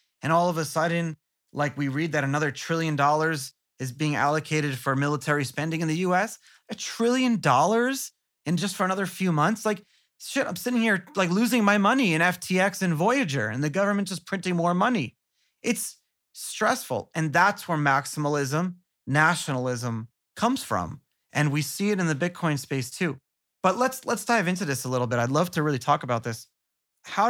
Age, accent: 30-49, American